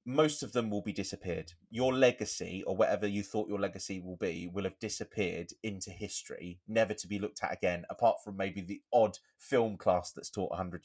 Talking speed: 205 wpm